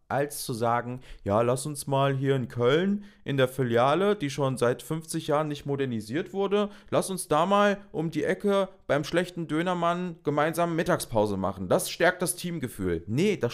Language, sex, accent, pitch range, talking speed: German, male, German, 115-165 Hz, 175 wpm